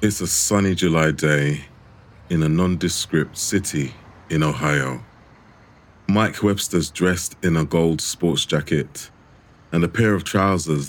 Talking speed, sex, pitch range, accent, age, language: 130 wpm, male, 80-105 Hz, British, 30-49, English